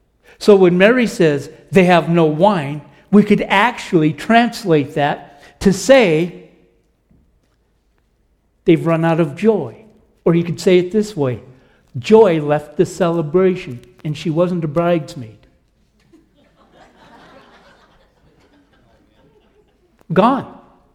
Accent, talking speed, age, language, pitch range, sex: American, 105 wpm, 60-79, English, 170-235 Hz, male